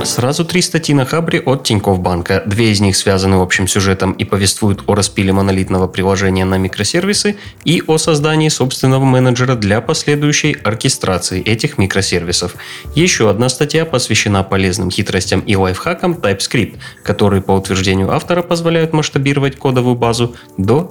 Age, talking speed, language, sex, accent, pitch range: 20-39, 145 wpm, Russian, male, native, 95-145 Hz